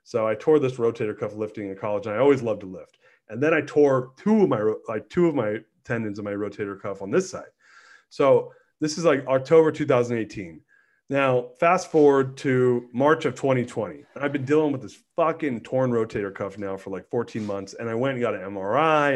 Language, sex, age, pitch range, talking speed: English, male, 30-49, 115-145 Hz, 215 wpm